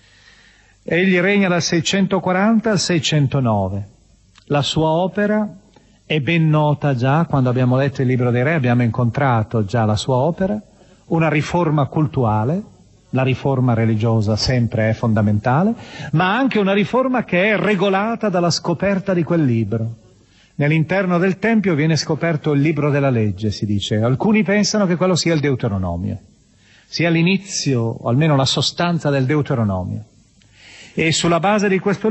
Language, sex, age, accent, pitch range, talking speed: Italian, male, 40-59, native, 120-195 Hz, 145 wpm